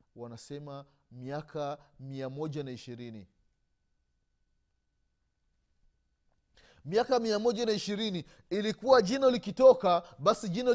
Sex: male